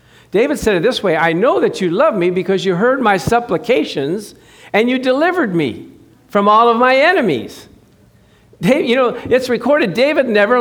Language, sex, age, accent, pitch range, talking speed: English, male, 50-69, American, 140-200 Hz, 175 wpm